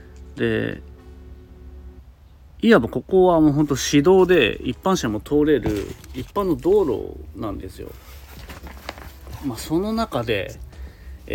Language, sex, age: Japanese, male, 40-59